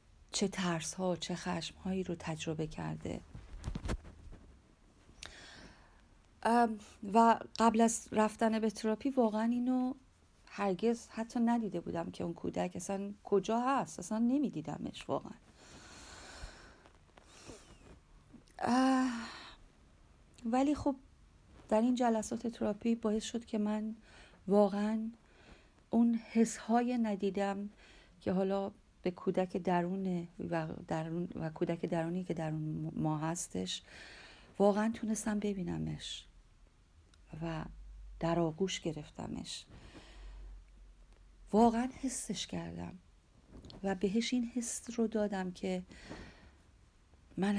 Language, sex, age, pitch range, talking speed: Persian, female, 40-59, 155-225 Hz, 95 wpm